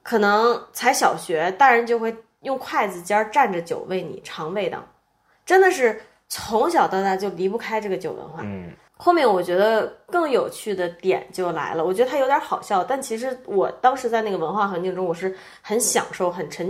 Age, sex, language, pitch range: 20-39, female, Chinese, 190-300 Hz